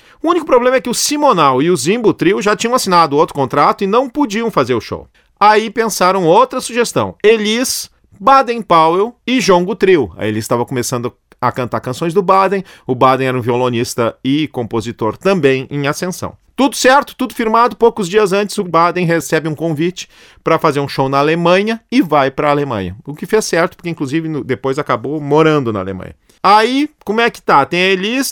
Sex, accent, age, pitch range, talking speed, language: male, Brazilian, 40-59, 135-225 Hz, 195 wpm, Portuguese